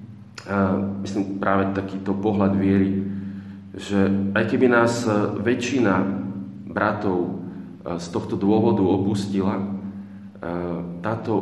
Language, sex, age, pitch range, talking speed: Slovak, male, 40-59, 90-105 Hz, 85 wpm